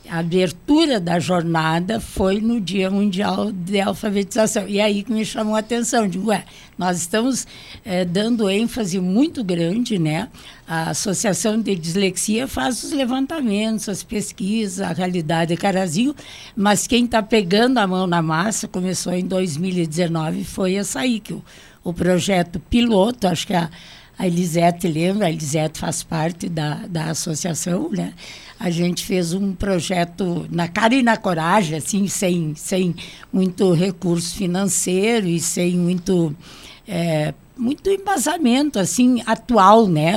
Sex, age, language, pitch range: female, 60-79, Portuguese, 170-215 Hz